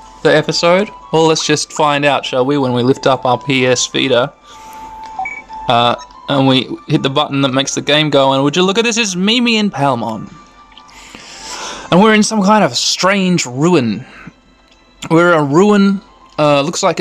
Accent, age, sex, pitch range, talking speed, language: Australian, 20-39, male, 130-180 Hz, 180 wpm, English